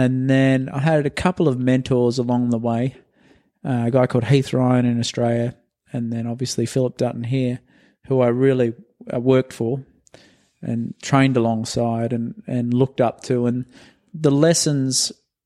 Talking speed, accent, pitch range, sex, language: 155 wpm, Australian, 120-135 Hz, male, English